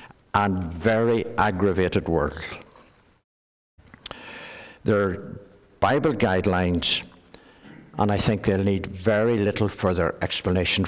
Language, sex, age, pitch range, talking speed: English, male, 60-79, 90-110 Hz, 95 wpm